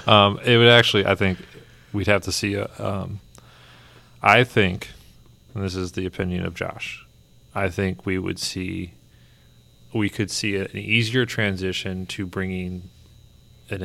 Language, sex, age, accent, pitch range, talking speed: English, male, 30-49, American, 90-100 Hz, 145 wpm